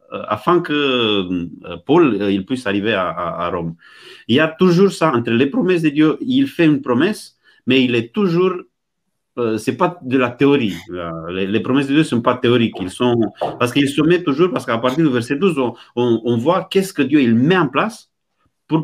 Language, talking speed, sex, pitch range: French, 225 wpm, male, 110-160 Hz